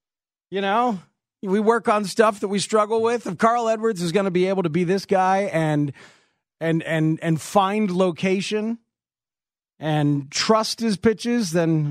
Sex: male